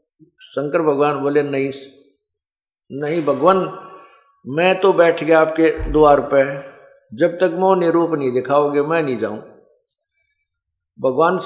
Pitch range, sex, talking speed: 140-180 Hz, male, 120 wpm